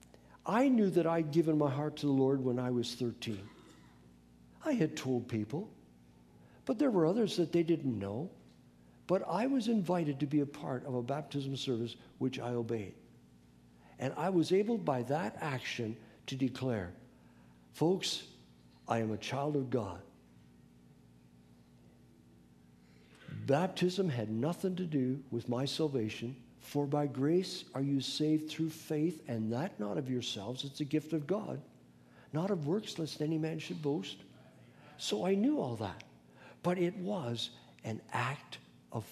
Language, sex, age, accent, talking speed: English, male, 60-79, American, 155 wpm